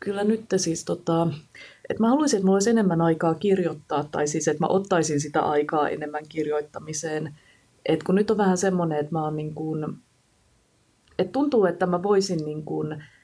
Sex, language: female, Finnish